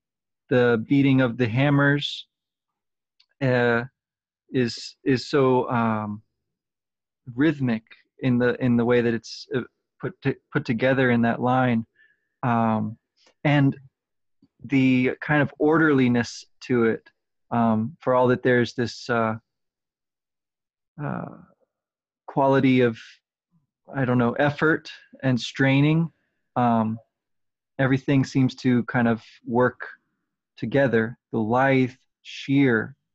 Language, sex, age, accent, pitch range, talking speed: English, male, 30-49, American, 120-140 Hz, 110 wpm